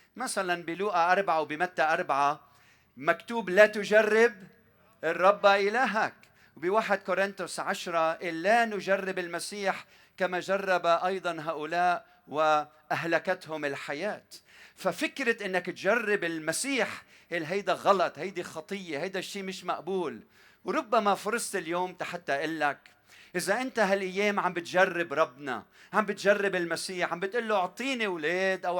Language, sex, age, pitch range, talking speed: Arabic, male, 40-59, 165-210 Hz, 115 wpm